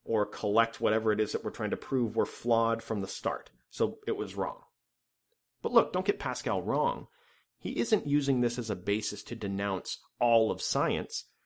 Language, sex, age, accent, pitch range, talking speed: English, male, 30-49, American, 110-150 Hz, 195 wpm